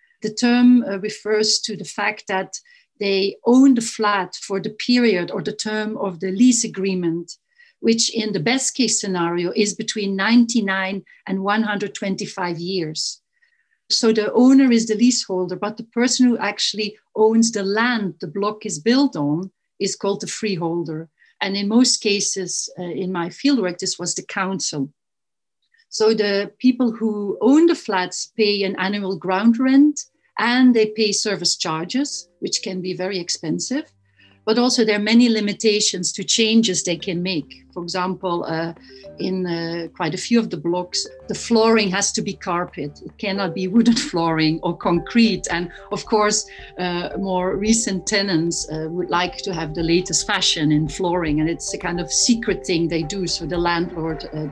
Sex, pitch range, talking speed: female, 175-225 Hz, 170 wpm